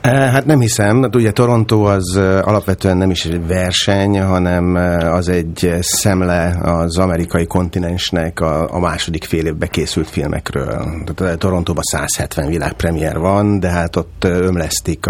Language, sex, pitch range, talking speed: Hungarian, male, 80-95 Hz, 130 wpm